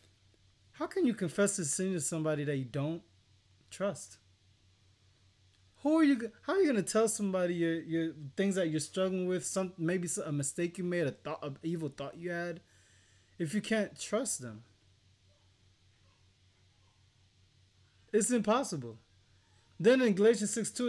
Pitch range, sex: 120-200 Hz, male